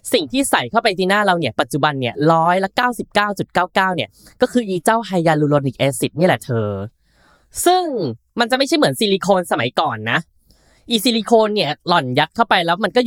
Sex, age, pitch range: female, 10-29, 145-225 Hz